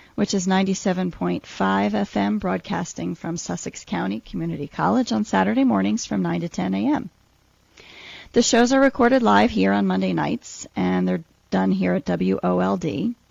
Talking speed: 150 wpm